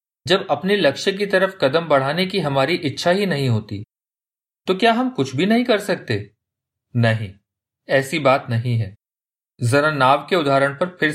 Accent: native